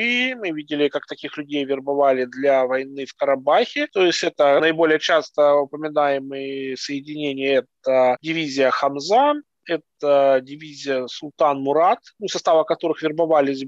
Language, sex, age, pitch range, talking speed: Russian, male, 20-39, 140-170 Hz, 115 wpm